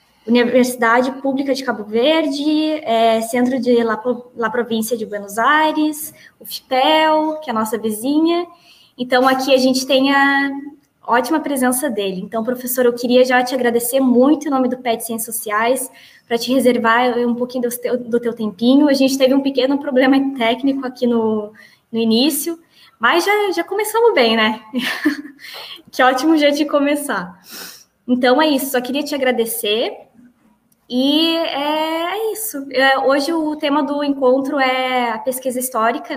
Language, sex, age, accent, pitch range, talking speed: Portuguese, female, 10-29, Brazilian, 235-280 Hz, 155 wpm